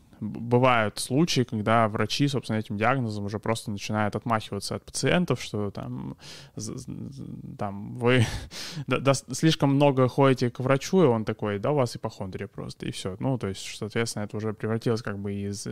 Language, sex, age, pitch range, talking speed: Russian, male, 20-39, 105-125 Hz, 160 wpm